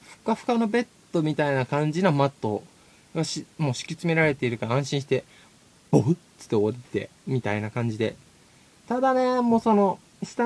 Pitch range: 135-200 Hz